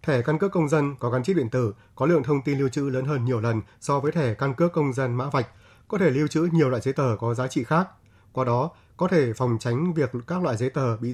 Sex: male